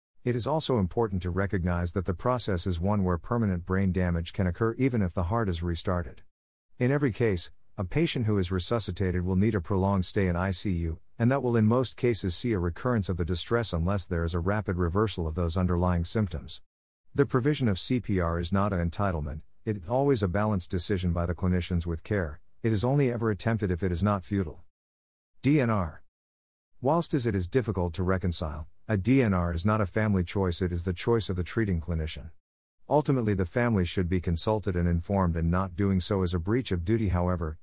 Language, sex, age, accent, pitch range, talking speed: English, male, 50-69, American, 85-110 Hz, 205 wpm